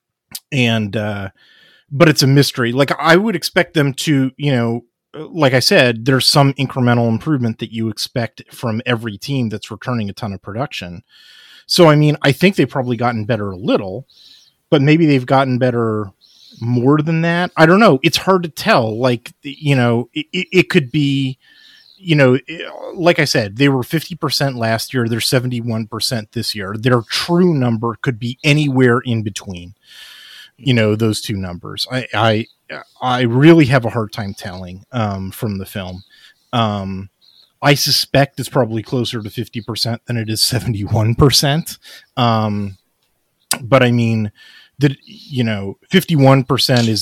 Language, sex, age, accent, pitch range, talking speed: English, male, 30-49, American, 110-140 Hz, 165 wpm